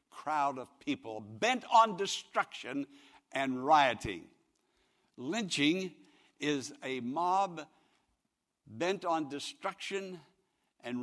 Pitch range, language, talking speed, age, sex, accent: 145-225 Hz, English, 85 wpm, 60-79, male, American